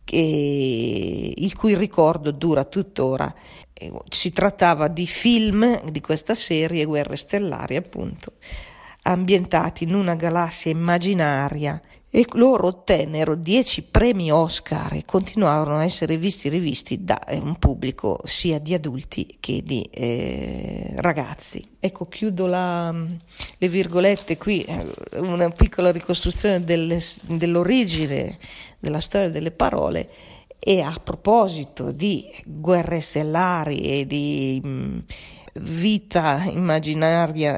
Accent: native